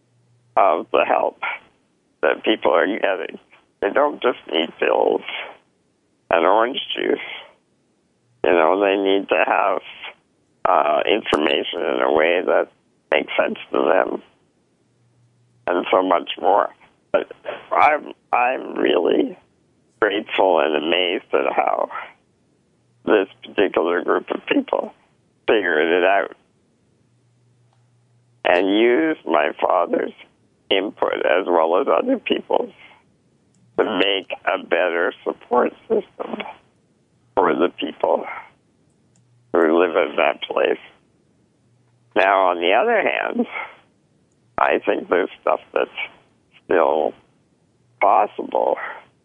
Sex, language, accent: male, English, American